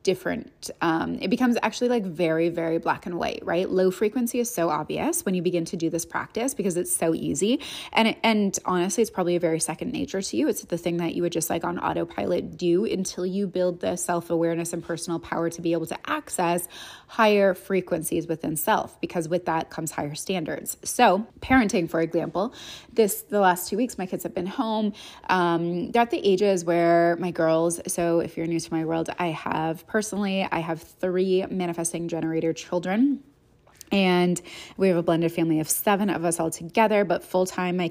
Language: English